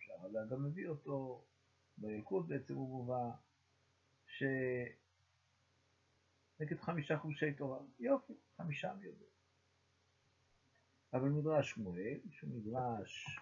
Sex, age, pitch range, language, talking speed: male, 50-69, 105-140 Hz, Hebrew, 90 wpm